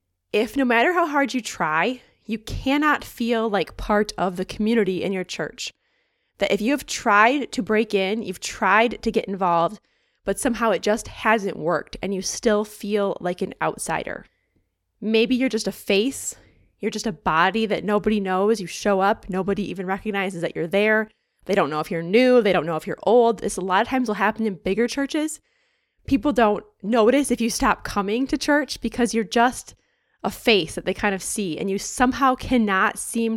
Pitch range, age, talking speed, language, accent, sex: 190-245 Hz, 20-39, 200 wpm, English, American, female